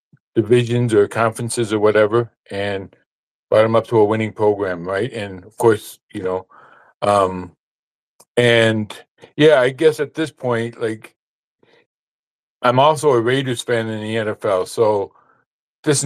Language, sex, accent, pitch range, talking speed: English, male, American, 110-130 Hz, 140 wpm